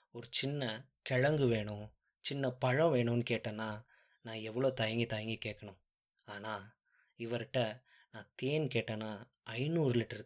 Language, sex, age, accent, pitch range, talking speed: Tamil, male, 20-39, native, 110-130 Hz, 115 wpm